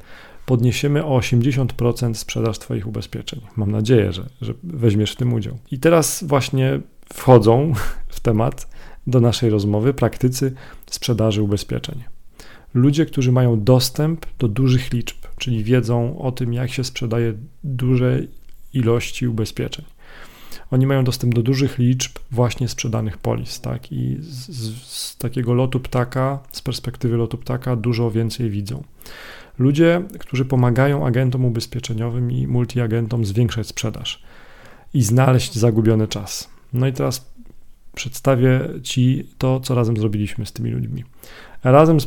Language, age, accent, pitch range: Polish, 40-59, native, 115-130 Hz